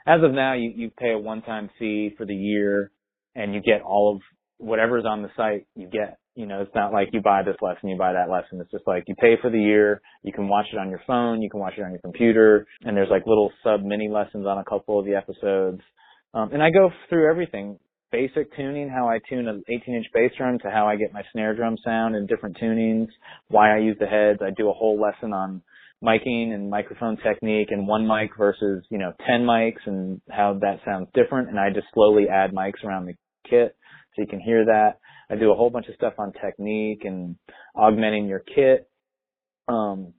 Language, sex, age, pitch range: English, male, 30-49, 100-115 Hz